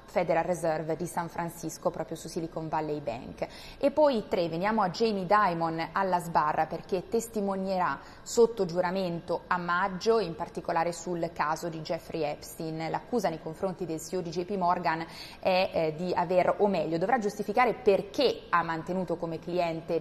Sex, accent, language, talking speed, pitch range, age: female, native, Italian, 160 wpm, 165-200 Hz, 20-39